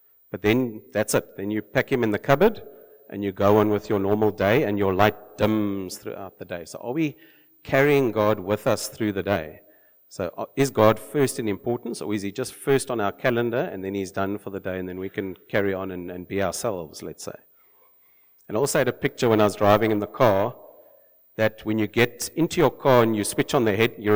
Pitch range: 100-125 Hz